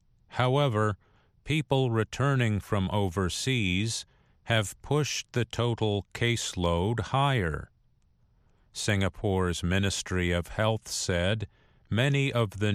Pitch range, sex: 95-115 Hz, male